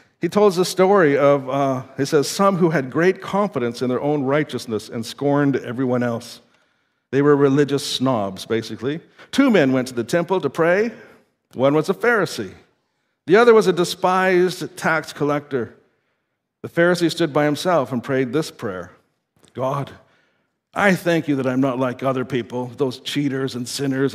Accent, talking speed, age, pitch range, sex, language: American, 170 wpm, 50-69, 130-175 Hz, male, English